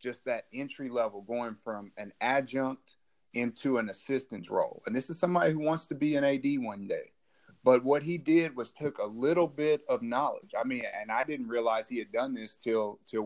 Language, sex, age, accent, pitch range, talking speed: English, male, 30-49, American, 115-165 Hz, 215 wpm